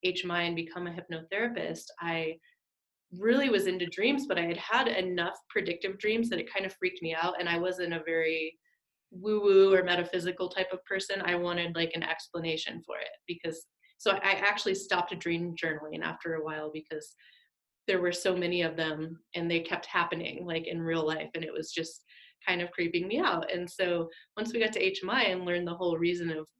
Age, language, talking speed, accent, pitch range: 30-49, English, 205 wpm, American, 165-185 Hz